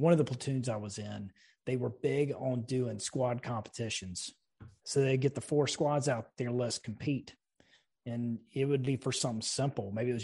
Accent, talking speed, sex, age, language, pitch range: American, 200 wpm, male, 30-49, English, 115-145 Hz